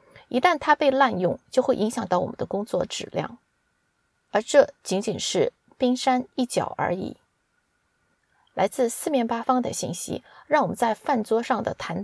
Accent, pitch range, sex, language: native, 205-275 Hz, female, Chinese